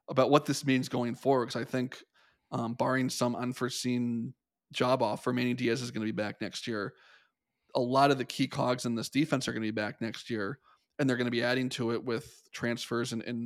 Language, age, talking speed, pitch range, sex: English, 20-39, 235 wpm, 120-135 Hz, male